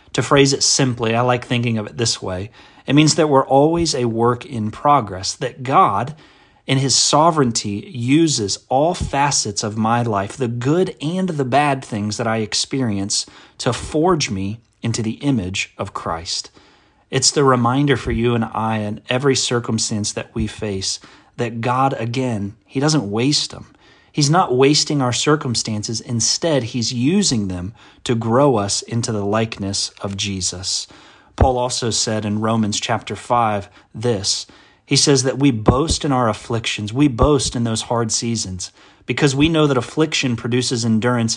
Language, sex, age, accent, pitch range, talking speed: English, male, 30-49, American, 105-135 Hz, 165 wpm